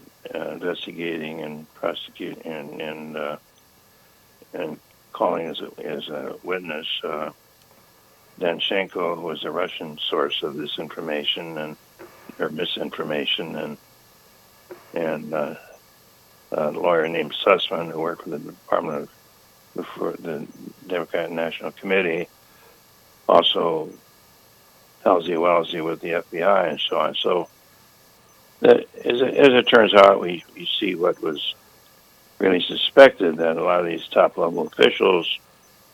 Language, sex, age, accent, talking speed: English, male, 60-79, American, 125 wpm